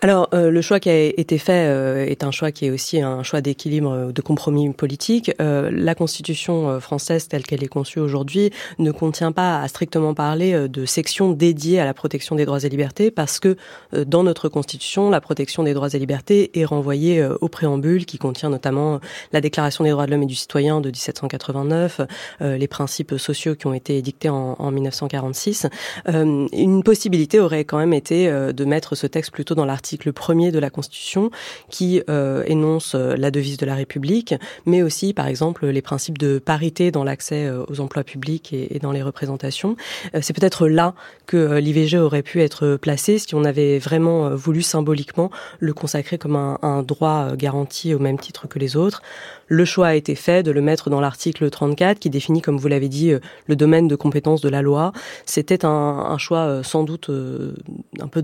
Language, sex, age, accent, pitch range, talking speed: French, female, 30-49, French, 140-165 Hz, 210 wpm